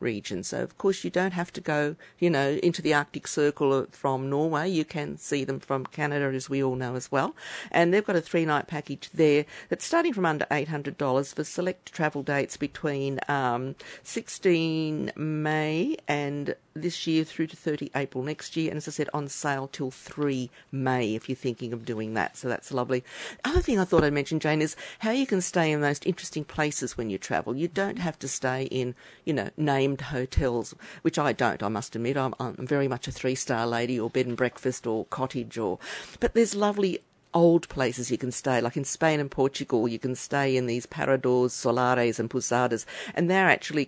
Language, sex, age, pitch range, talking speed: English, female, 50-69, 130-170 Hz, 210 wpm